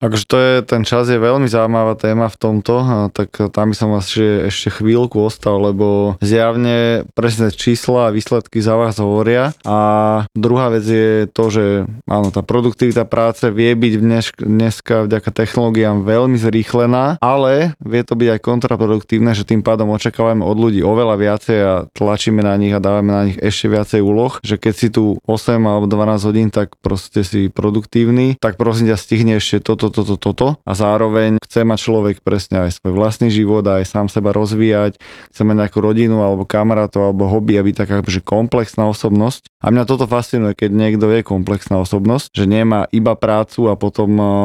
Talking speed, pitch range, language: 180 wpm, 105-115 Hz, Slovak